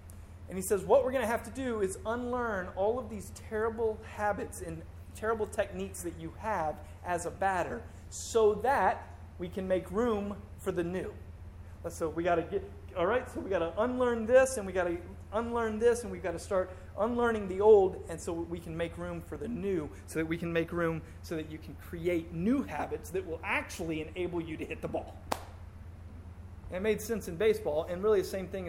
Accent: American